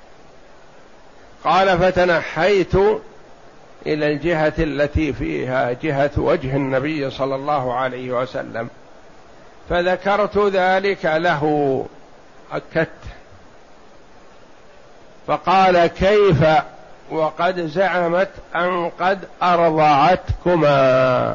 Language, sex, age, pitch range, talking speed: Arabic, male, 60-79, 145-185 Hz, 65 wpm